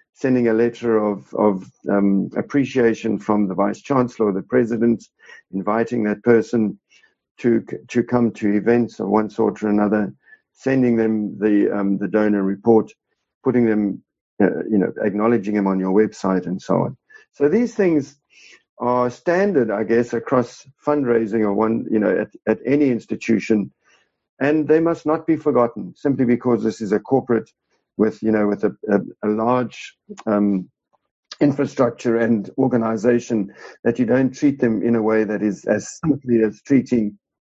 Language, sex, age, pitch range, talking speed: English, male, 50-69, 105-135 Hz, 165 wpm